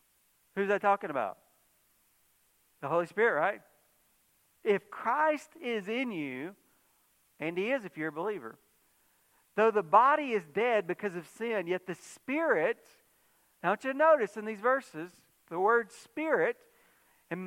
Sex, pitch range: male, 170-235 Hz